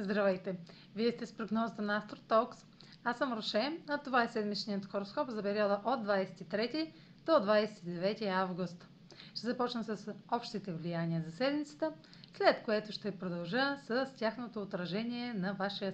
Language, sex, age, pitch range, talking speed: Bulgarian, female, 40-59, 185-235 Hz, 145 wpm